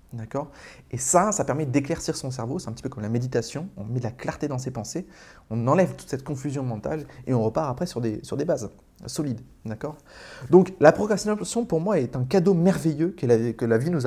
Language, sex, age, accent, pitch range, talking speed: French, male, 20-39, French, 120-165 Hz, 225 wpm